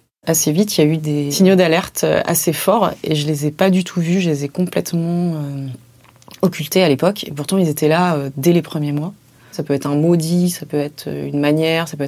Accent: French